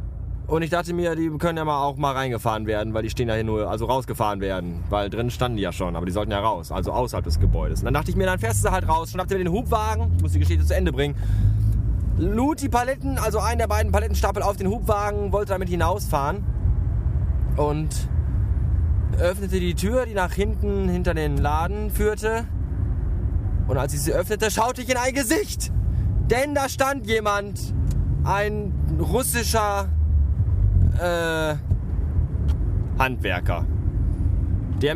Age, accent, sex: 20-39, German, male